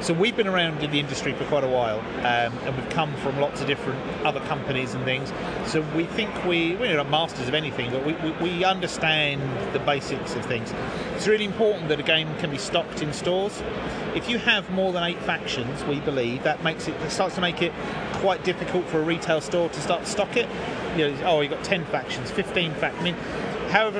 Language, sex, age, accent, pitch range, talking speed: English, male, 30-49, British, 155-195 Hz, 230 wpm